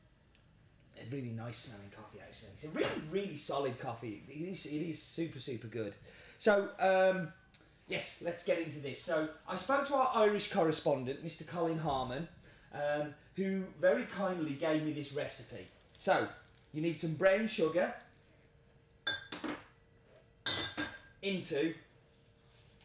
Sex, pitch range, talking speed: male, 140-180 Hz, 125 wpm